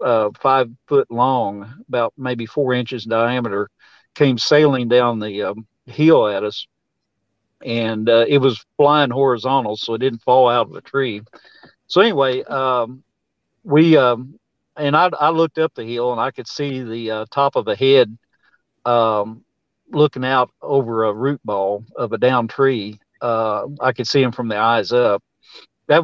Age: 50-69